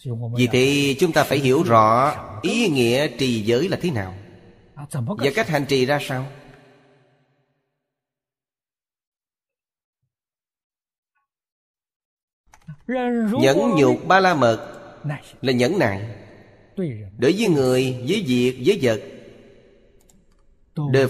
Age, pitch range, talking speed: 30-49, 115-155 Hz, 100 wpm